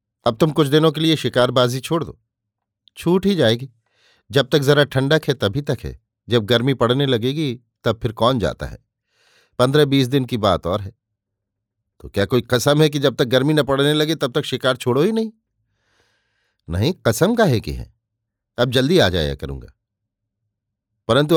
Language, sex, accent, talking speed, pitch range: Hindi, male, native, 185 wpm, 110-140 Hz